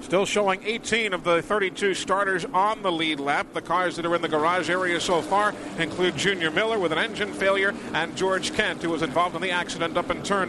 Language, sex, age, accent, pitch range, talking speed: English, male, 50-69, American, 175-210 Hz, 230 wpm